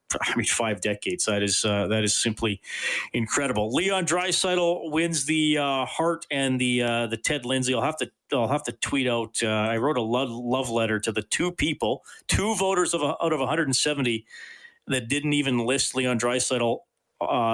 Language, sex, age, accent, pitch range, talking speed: English, male, 40-59, American, 115-155 Hz, 185 wpm